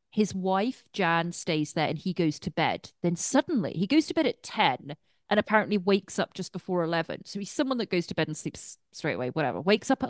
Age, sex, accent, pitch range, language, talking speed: 30-49, female, British, 160-215 Hz, English, 240 wpm